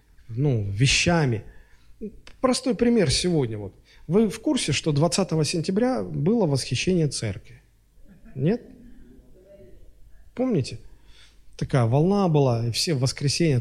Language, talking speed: Russian, 110 wpm